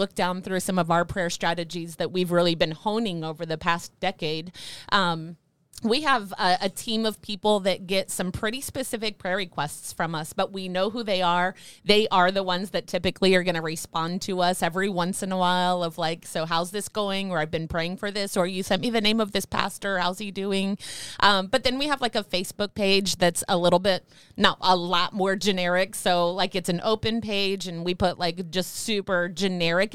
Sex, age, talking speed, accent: female, 30-49, 225 wpm, American